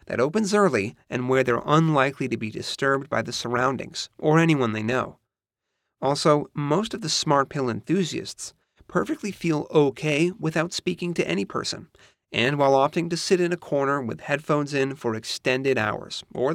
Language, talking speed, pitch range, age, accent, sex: English, 170 wpm, 130-165 Hz, 30-49, American, male